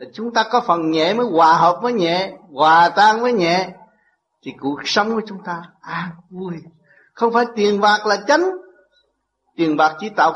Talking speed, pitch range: 190 wpm, 160-225 Hz